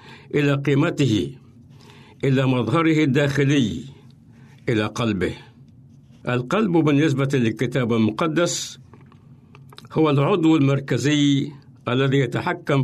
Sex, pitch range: male, 120-145 Hz